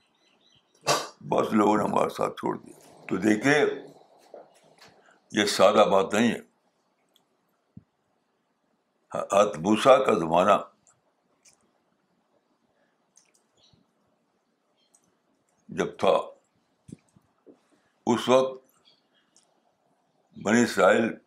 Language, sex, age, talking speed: Urdu, male, 60-79, 60 wpm